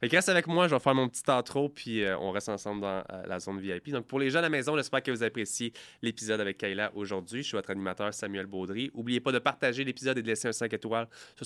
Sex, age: male, 20-39